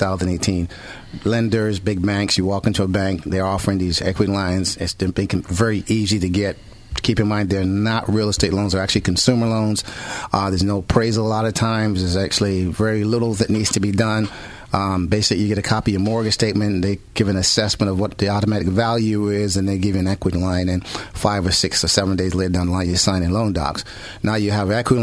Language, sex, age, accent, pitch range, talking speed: English, male, 30-49, American, 95-110 Hz, 230 wpm